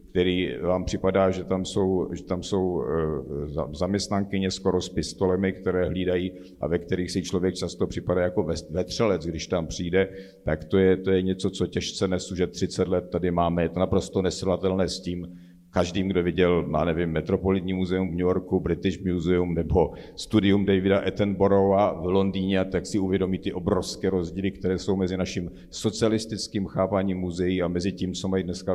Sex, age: male, 50-69